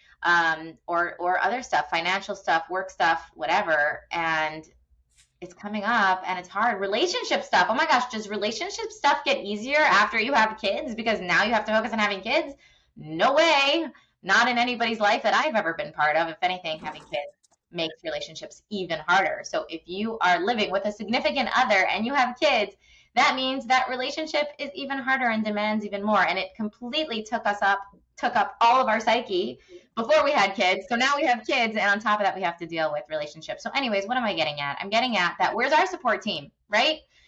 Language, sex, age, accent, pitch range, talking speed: English, female, 20-39, American, 180-265 Hz, 210 wpm